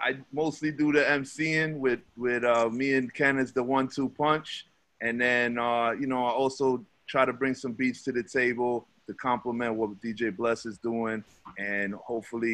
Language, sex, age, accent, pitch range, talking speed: English, male, 30-49, American, 115-135 Hz, 185 wpm